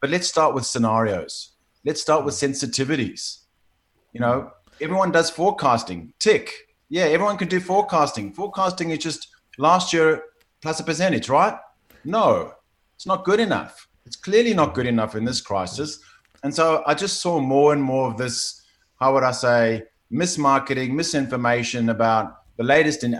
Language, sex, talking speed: English, male, 160 wpm